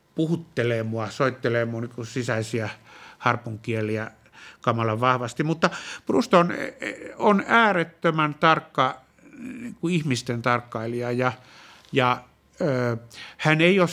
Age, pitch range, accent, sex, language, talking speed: 60-79, 125-155 Hz, native, male, Finnish, 100 wpm